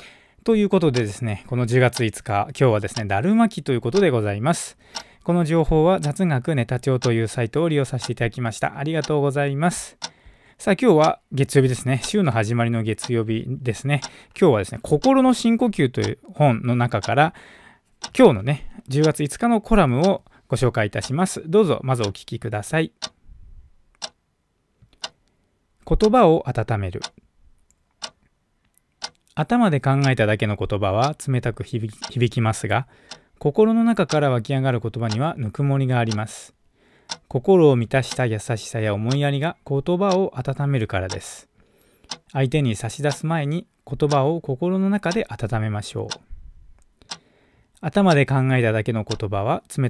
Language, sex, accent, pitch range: Japanese, male, native, 115-155 Hz